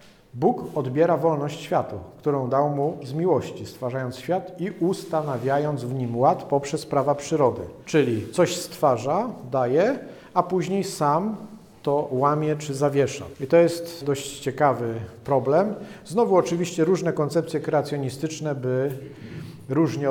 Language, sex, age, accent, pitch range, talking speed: Polish, male, 40-59, native, 130-165 Hz, 130 wpm